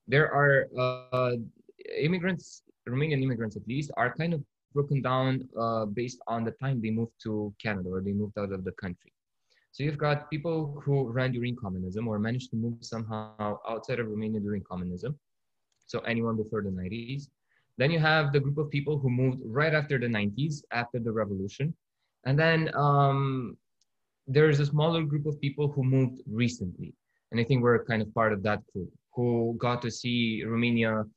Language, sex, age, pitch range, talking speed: Romanian, male, 20-39, 110-140 Hz, 185 wpm